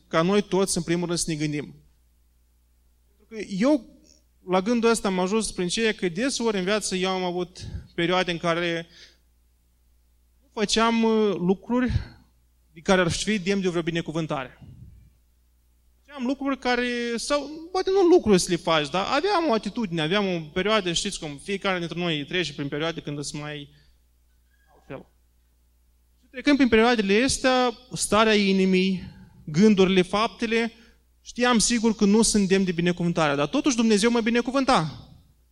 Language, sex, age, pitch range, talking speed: Romanian, male, 20-39, 155-220 Hz, 155 wpm